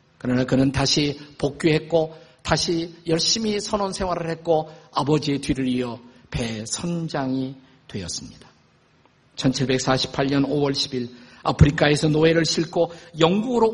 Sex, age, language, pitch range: male, 50-69, Korean, 130-175 Hz